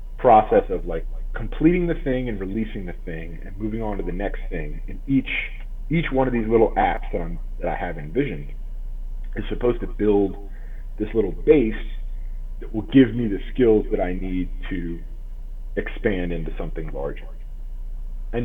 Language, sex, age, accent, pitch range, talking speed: English, male, 30-49, American, 90-115 Hz, 170 wpm